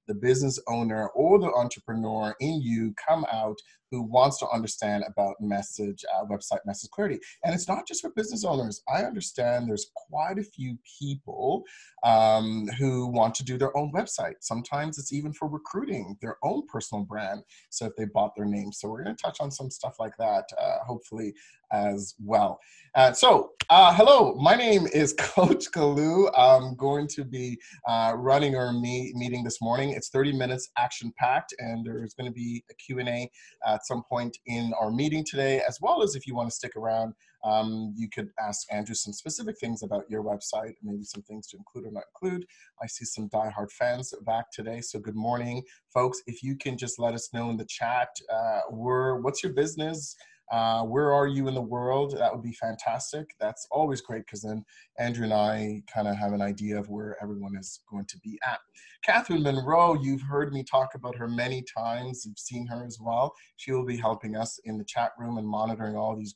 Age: 30-49